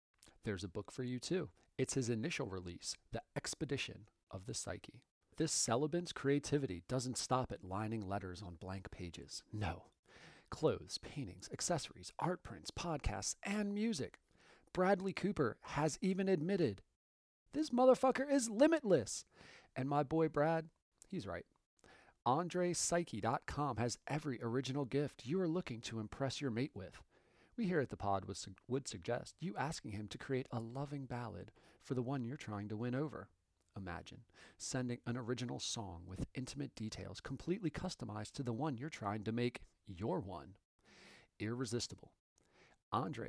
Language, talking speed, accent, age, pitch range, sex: English, 150 wpm, American, 40-59, 105-145 Hz, male